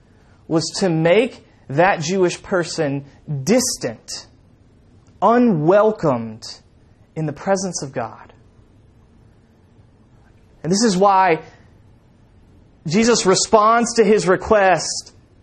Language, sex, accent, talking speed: English, male, American, 85 wpm